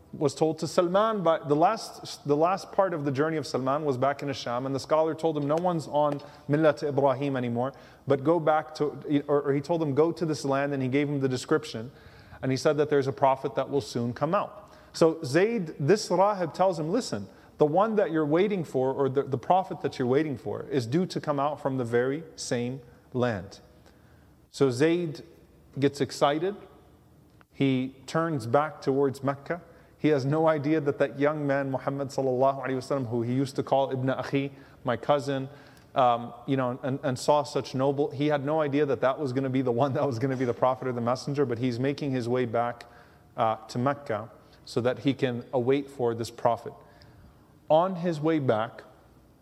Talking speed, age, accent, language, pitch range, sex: 205 wpm, 30-49, American, English, 130-155 Hz, male